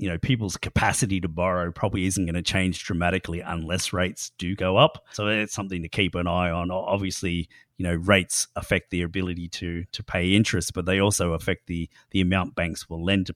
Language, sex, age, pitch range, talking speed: English, male, 30-49, 90-105 Hz, 210 wpm